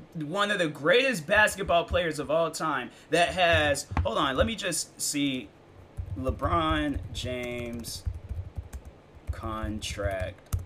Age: 20-39